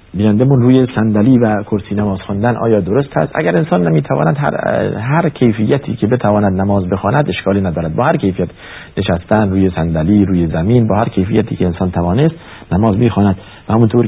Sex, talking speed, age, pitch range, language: male, 175 wpm, 50-69, 95-125 Hz, Persian